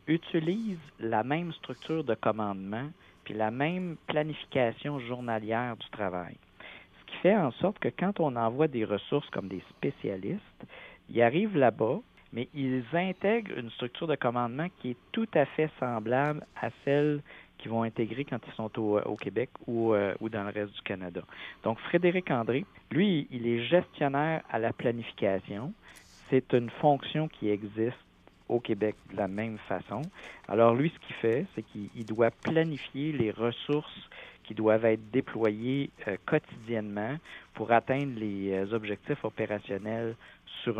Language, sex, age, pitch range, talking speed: French, male, 50-69, 105-140 Hz, 155 wpm